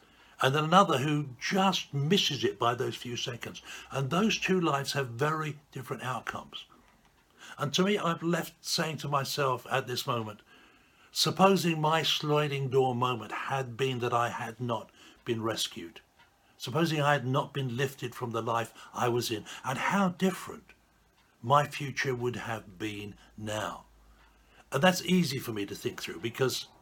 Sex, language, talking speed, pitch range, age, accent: male, English, 165 wpm, 115-150 Hz, 60-79, British